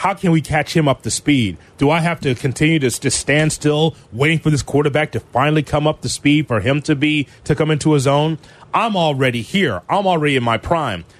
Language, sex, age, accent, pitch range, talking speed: English, male, 30-49, American, 115-155 Hz, 235 wpm